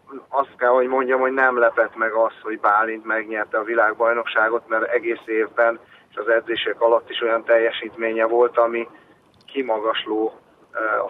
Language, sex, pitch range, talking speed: Hungarian, male, 115-130 Hz, 150 wpm